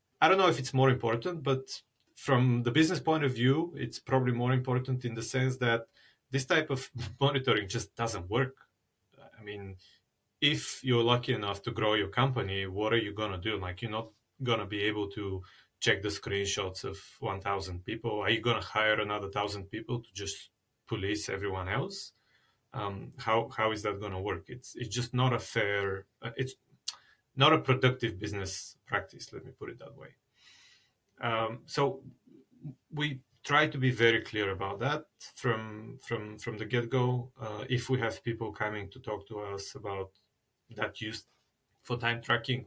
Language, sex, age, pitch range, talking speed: English, male, 30-49, 105-130 Hz, 185 wpm